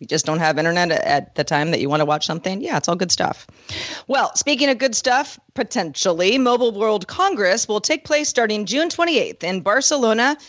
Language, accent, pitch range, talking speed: English, American, 170-260 Hz, 205 wpm